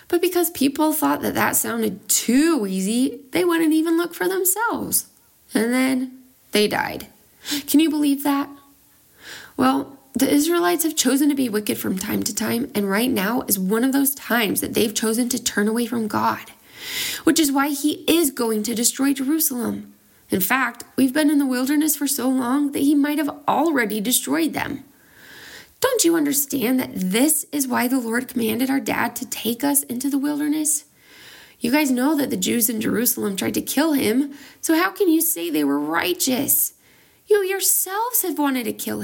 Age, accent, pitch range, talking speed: 20-39, American, 240-310 Hz, 185 wpm